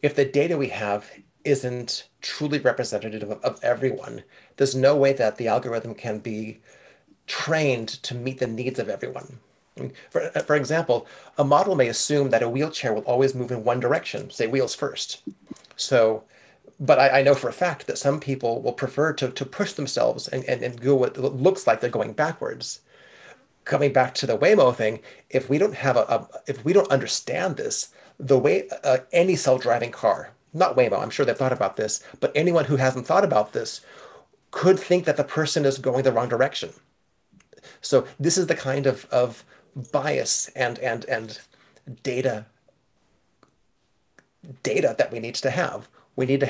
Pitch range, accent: 120-145 Hz, American